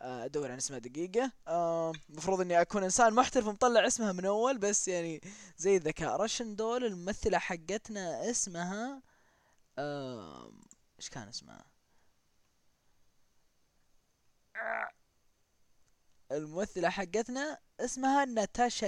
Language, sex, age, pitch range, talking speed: Arabic, female, 20-39, 160-235 Hz, 100 wpm